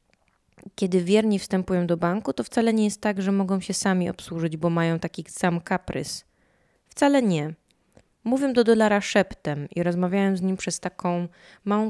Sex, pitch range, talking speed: female, 165-205 Hz, 165 wpm